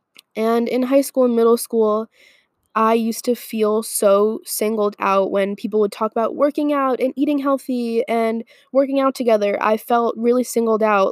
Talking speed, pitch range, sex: 180 wpm, 195-235 Hz, female